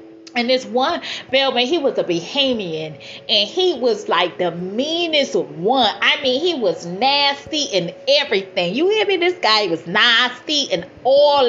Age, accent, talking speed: 30-49, American, 165 wpm